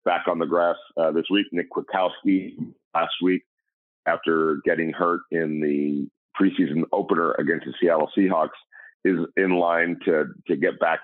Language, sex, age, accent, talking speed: English, male, 40-59, American, 160 wpm